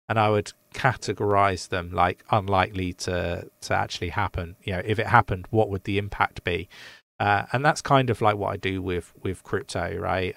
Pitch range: 95-110 Hz